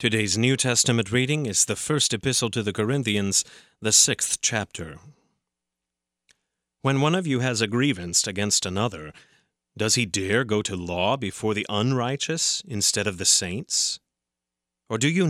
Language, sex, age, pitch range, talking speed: English, male, 30-49, 100-140 Hz, 155 wpm